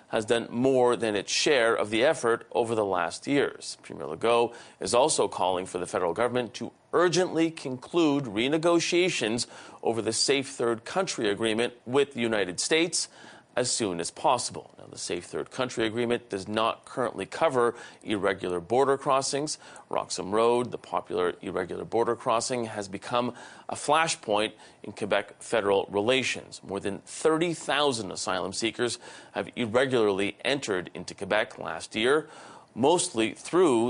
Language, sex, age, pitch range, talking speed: English, male, 40-59, 110-155 Hz, 145 wpm